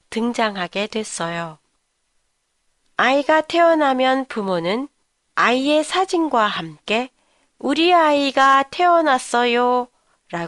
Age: 40-59